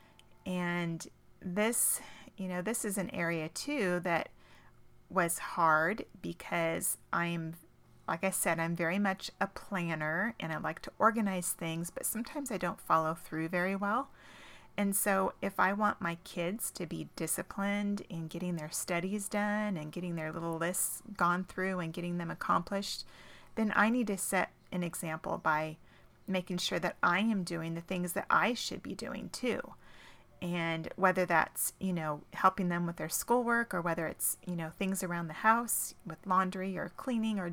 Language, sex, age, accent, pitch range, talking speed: English, female, 30-49, American, 170-200 Hz, 175 wpm